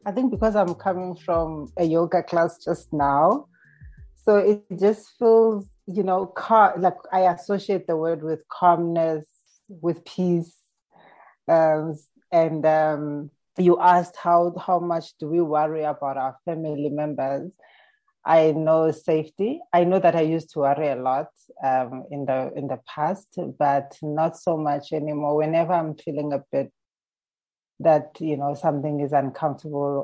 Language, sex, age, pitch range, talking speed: English, female, 30-49, 145-170 Hz, 150 wpm